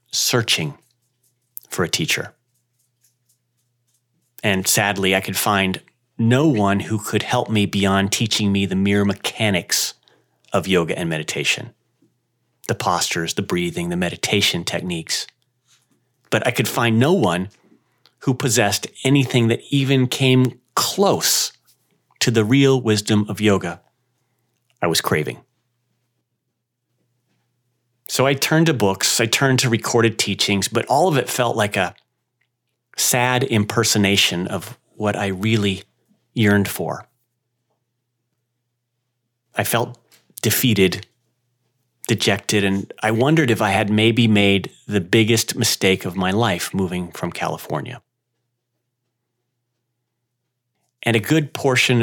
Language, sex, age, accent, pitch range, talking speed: English, male, 30-49, American, 105-125 Hz, 120 wpm